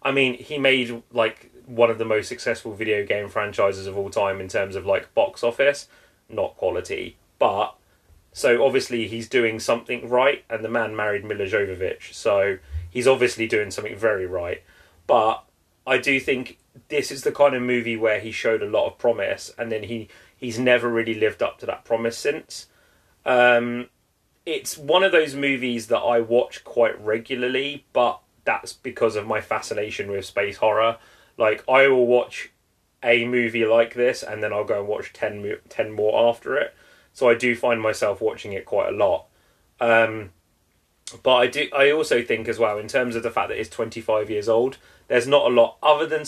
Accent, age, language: British, 30-49, English